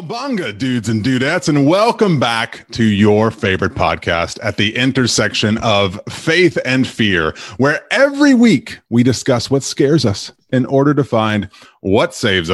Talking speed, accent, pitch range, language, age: 155 wpm, American, 100-135 Hz, English, 30-49